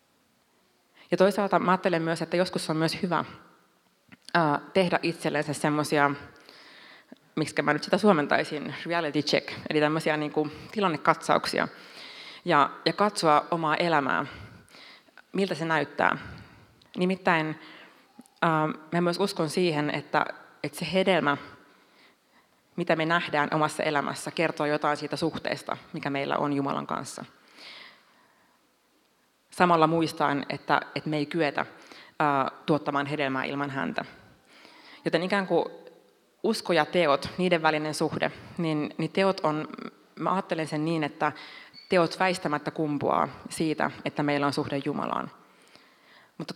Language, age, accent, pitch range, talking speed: Finnish, 30-49, native, 150-175 Hz, 115 wpm